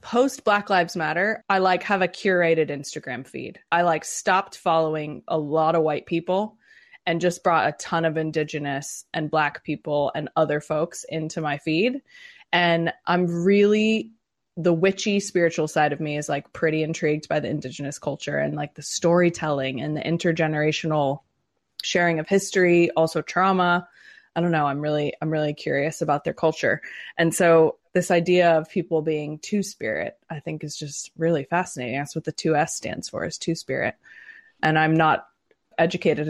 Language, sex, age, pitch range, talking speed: English, female, 20-39, 150-175 Hz, 170 wpm